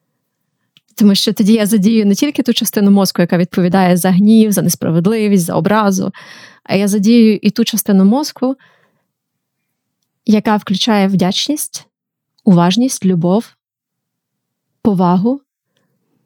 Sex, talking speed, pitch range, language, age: female, 115 wpm, 190-225 Hz, Ukrainian, 30-49